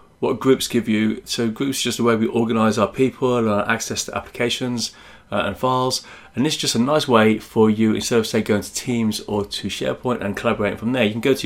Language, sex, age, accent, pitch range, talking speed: English, male, 30-49, British, 105-125 Hz, 245 wpm